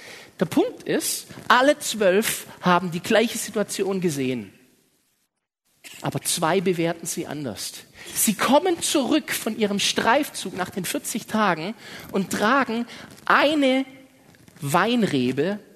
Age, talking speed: 40-59, 110 wpm